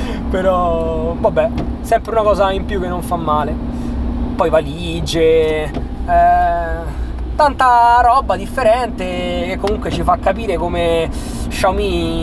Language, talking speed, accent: Italian, 120 wpm, native